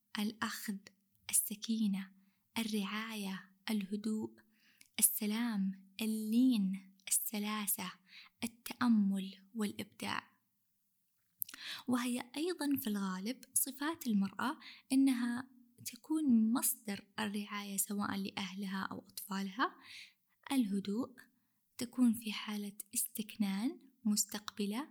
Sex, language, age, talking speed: female, Arabic, 10-29, 70 wpm